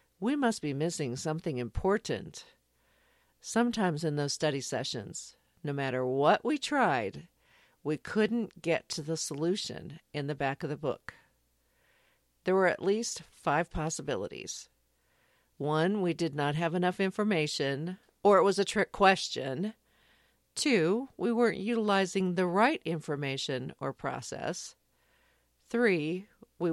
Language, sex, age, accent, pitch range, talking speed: English, female, 50-69, American, 140-195 Hz, 130 wpm